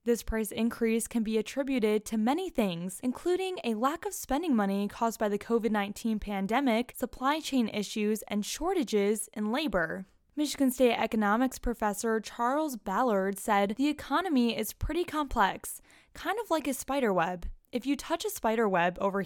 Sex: female